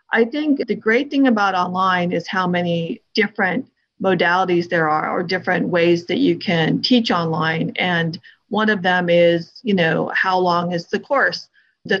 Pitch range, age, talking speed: 180-220 Hz, 40-59, 175 wpm